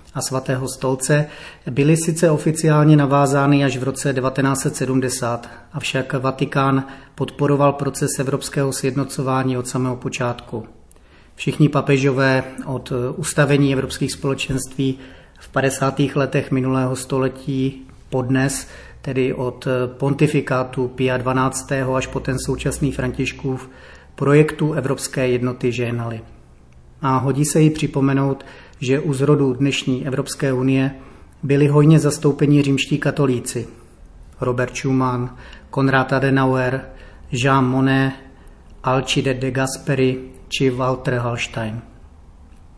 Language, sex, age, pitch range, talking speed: Czech, male, 30-49, 130-145 Hz, 105 wpm